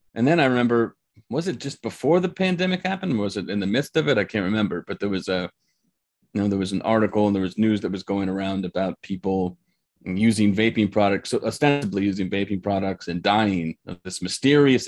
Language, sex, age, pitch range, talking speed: English, male, 30-49, 95-110 Hz, 215 wpm